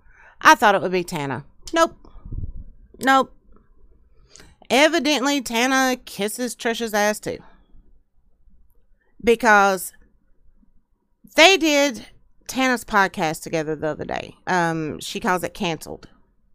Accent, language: American, English